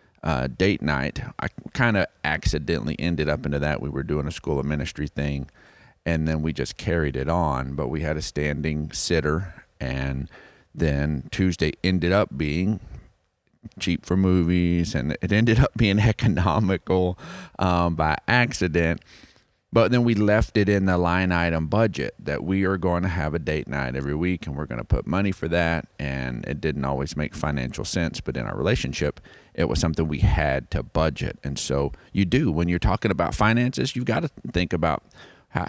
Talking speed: 190 wpm